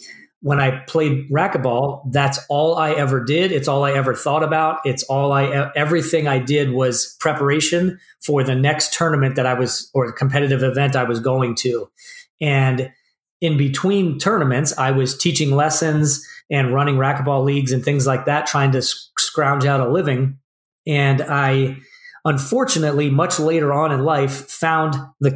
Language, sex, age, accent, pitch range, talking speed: English, male, 30-49, American, 135-160 Hz, 165 wpm